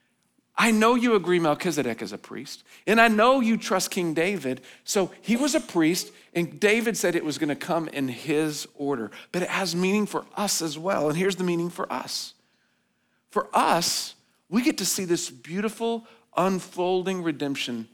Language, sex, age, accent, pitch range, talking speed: English, male, 40-59, American, 125-180 Hz, 185 wpm